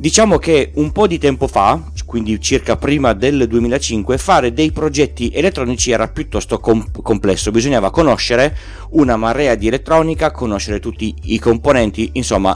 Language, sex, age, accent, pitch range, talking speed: Italian, male, 40-59, native, 95-140 Hz, 145 wpm